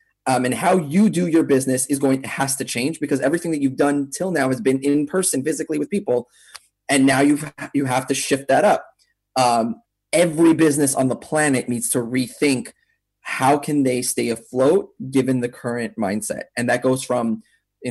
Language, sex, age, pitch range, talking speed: English, male, 20-39, 110-140 Hz, 195 wpm